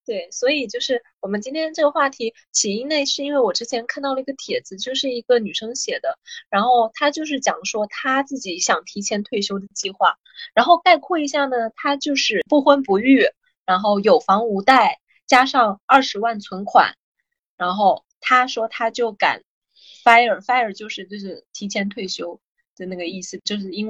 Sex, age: female, 20-39